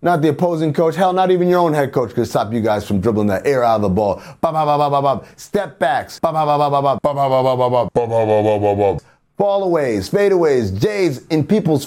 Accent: American